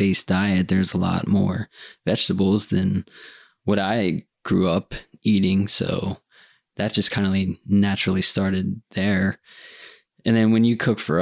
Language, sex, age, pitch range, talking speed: English, male, 20-39, 95-105 Hz, 150 wpm